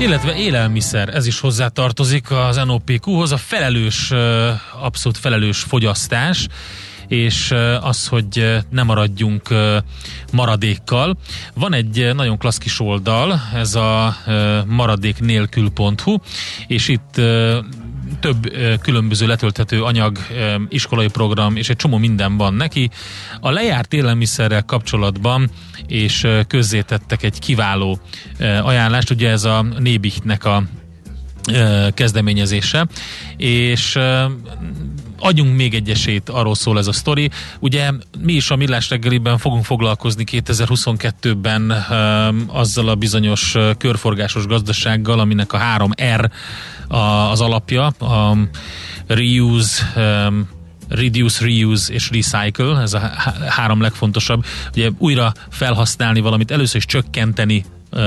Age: 30-49